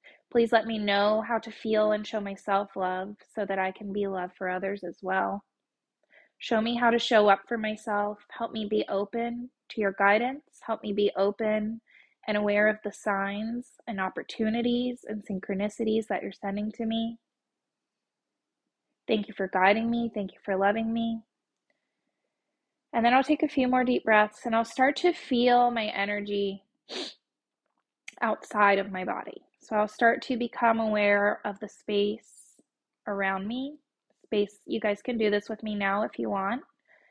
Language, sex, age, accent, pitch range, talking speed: English, female, 20-39, American, 200-235 Hz, 175 wpm